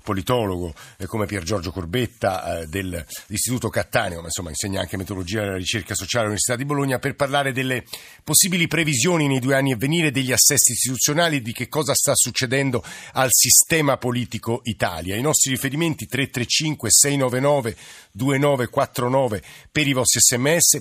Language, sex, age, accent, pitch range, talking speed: Italian, male, 50-69, native, 105-130 Hz, 145 wpm